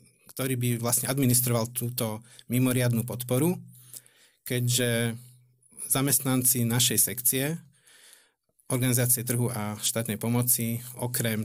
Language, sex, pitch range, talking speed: Slovak, male, 110-125 Hz, 90 wpm